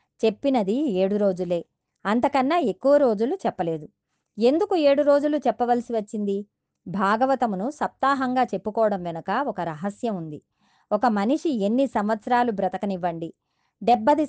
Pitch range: 200-265 Hz